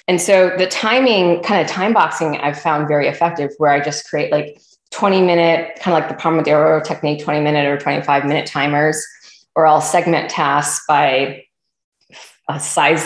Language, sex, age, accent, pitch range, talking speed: English, female, 20-39, American, 150-180 Hz, 170 wpm